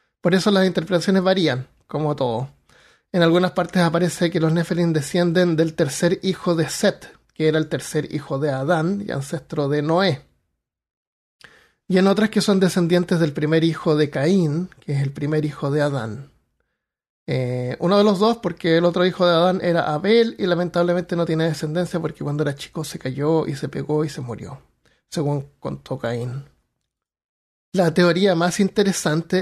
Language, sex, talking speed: Spanish, male, 175 wpm